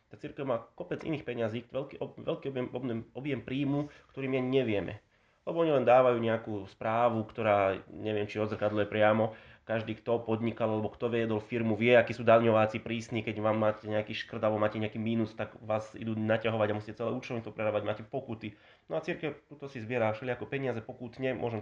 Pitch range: 105-125 Hz